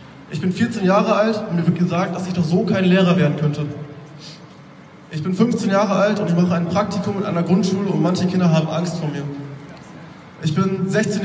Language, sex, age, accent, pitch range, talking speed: German, male, 20-39, German, 160-190 Hz, 215 wpm